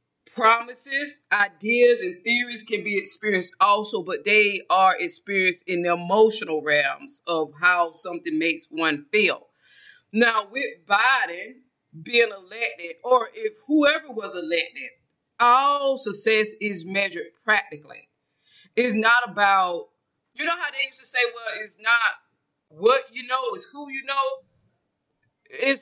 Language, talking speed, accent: English, 135 wpm, American